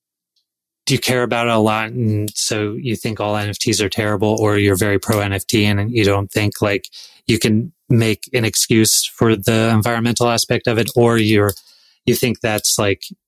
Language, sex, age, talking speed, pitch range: English, male, 30-49, 190 wpm, 105-125 Hz